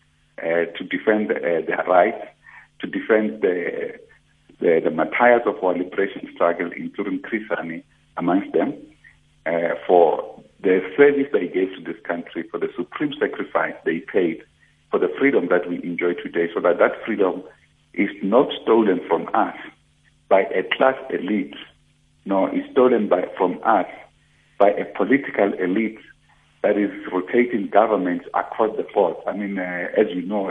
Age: 50-69